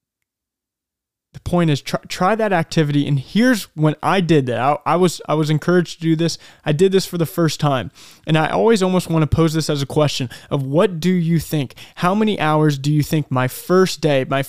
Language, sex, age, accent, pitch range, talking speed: English, male, 20-39, American, 140-185 Hz, 225 wpm